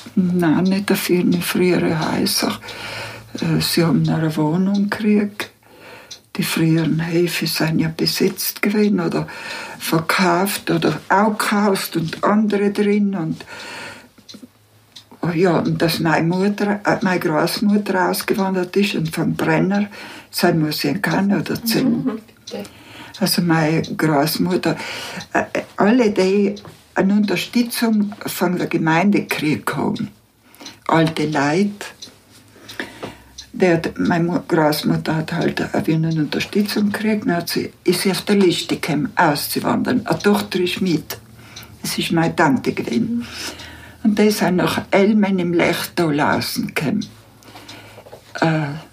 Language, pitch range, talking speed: German, 160-205 Hz, 110 wpm